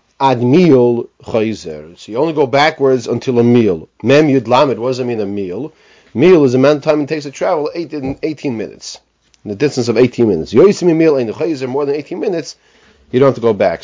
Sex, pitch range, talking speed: male, 115-145 Hz, 200 wpm